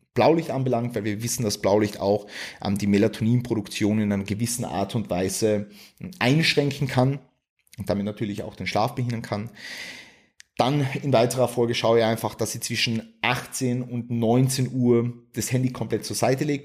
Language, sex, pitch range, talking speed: German, male, 105-130 Hz, 170 wpm